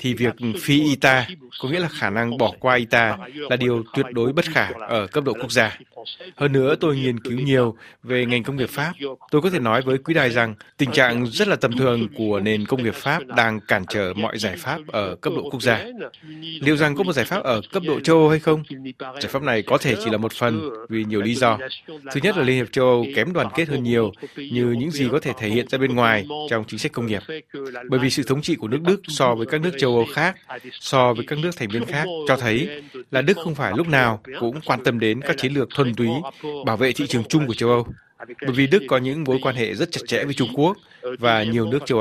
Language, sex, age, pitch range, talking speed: Vietnamese, male, 20-39, 120-150 Hz, 260 wpm